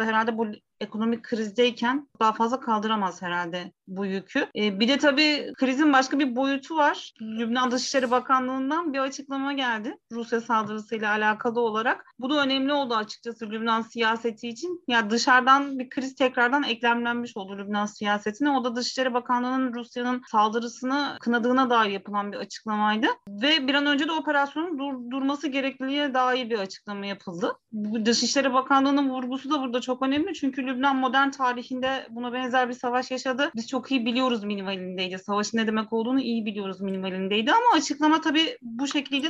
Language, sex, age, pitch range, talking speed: Turkish, female, 30-49, 225-275 Hz, 155 wpm